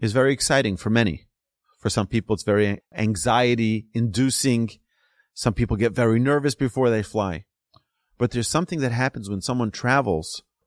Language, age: English, 40-59